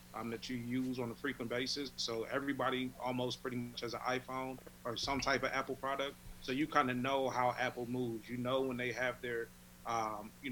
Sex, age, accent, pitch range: male, 30-49, American, 115-130 Hz